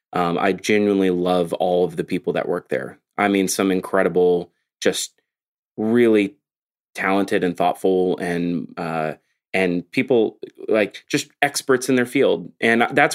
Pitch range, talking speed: 90-115 Hz, 145 wpm